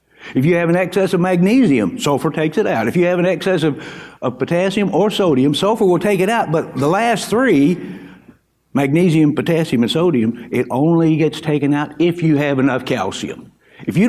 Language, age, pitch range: English, 60-79, 150-205 Hz